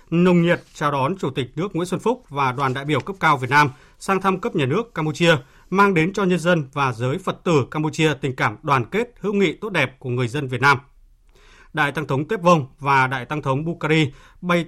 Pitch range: 140-180 Hz